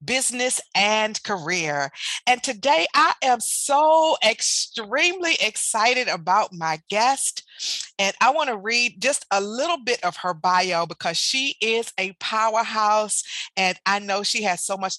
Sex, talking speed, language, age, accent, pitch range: female, 150 wpm, English, 40-59, American, 180-245 Hz